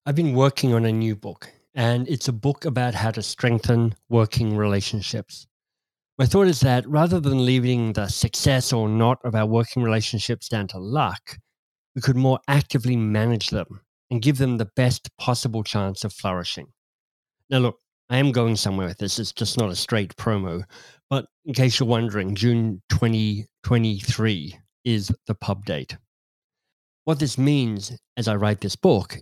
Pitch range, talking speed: 110-130 Hz, 170 wpm